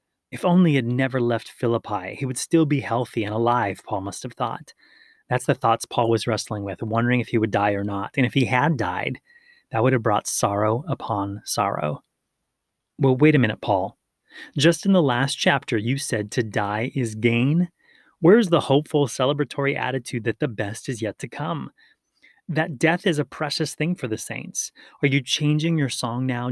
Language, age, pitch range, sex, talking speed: English, 30-49, 115-145 Hz, male, 195 wpm